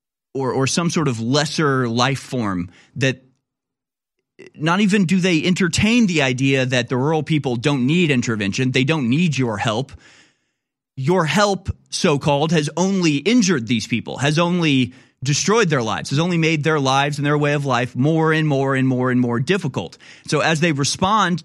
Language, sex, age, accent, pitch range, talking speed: English, male, 30-49, American, 130-165 Hz, 175 wpm